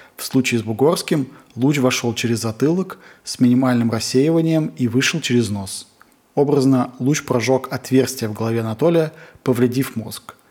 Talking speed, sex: 135 wpm, male